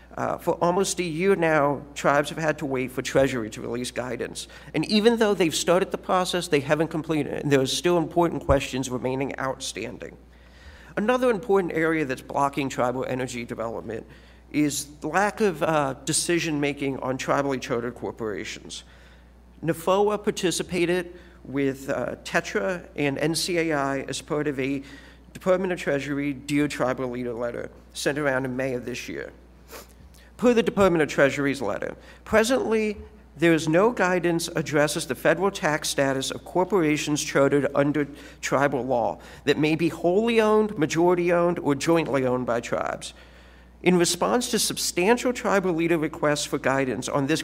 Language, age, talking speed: English, 50-69, 155 wpm